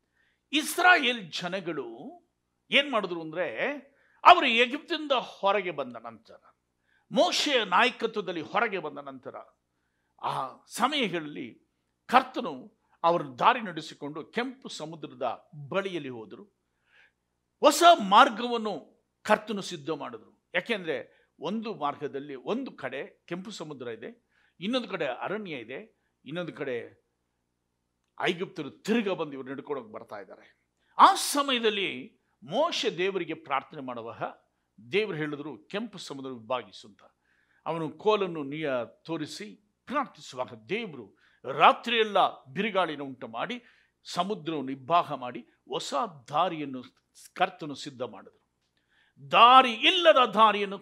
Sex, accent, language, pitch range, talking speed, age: male, native, Kannada, 140-235 Hz, 95 wpm, 60-79